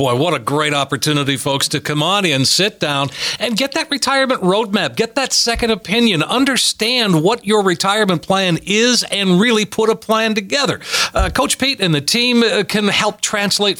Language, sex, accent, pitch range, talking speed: English, male, American, 165-210 Hz, 185 wpm